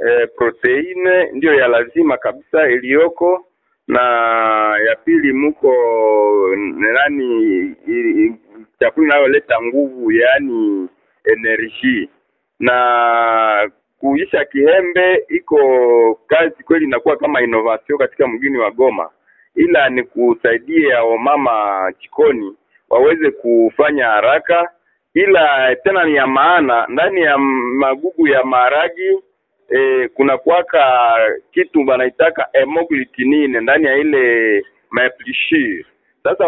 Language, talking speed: Swahili, 100 wpm